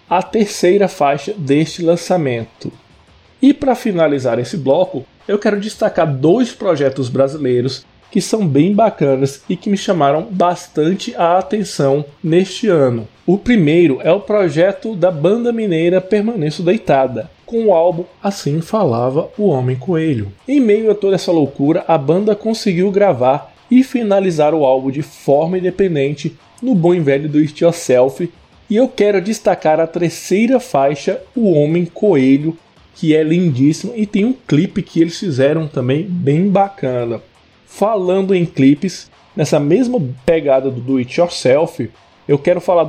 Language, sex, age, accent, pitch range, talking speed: Portuguese, male, 20-39, Brazilian, 140-195 Hz, 145 wpm